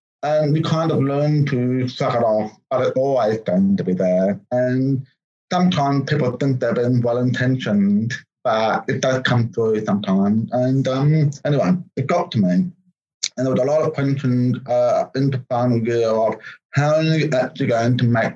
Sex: male